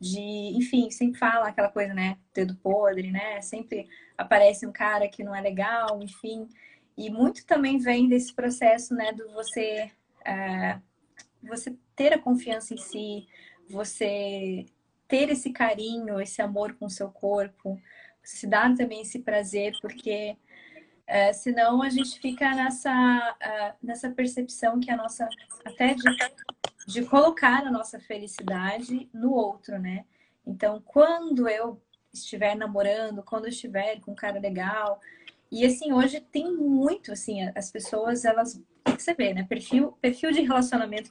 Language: English